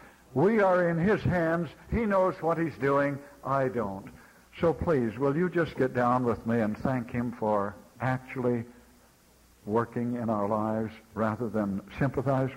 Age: 60-79